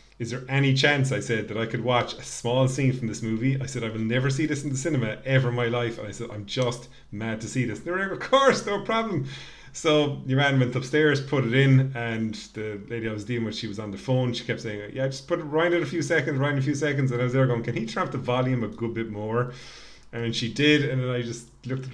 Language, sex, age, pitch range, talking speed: English, male, 30-49, 115-135 Hz, 295 wpm